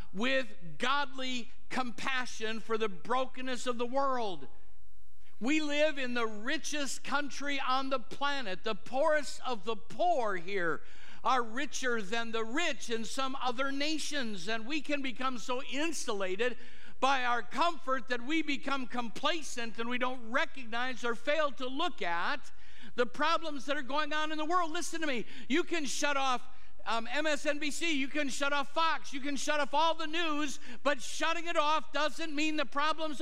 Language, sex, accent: English, male, American